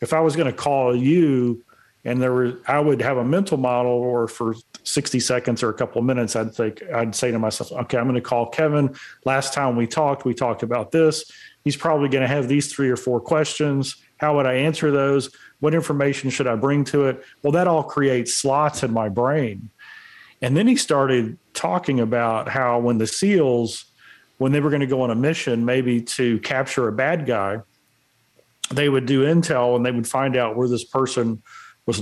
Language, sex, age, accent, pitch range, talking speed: English, male, 40-59, American, 120-150 Hz, 205 wpm